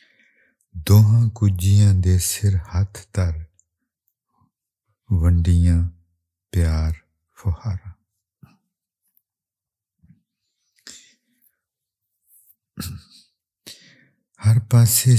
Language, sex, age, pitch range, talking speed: English, male, 60-79, 85-100 Hz, 40 wpm